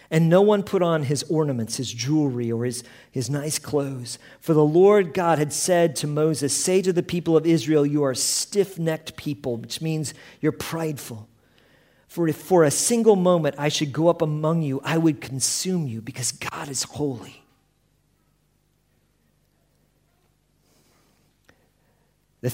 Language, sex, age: English, male, 50-69